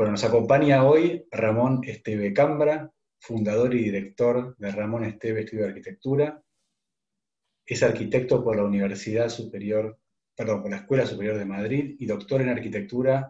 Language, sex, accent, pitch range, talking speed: Spanish, male, Argentinian, 105-125 Hz, 130 wpm